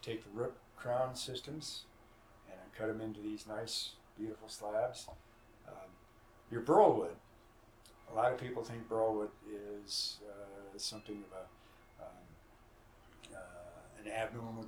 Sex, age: male, 60-79